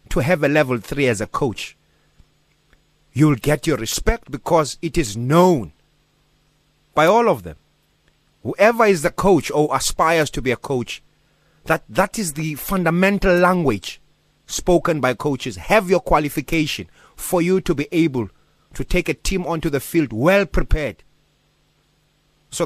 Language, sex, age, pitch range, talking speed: English, male, 30-49, 120-170 Hz, 150 wpm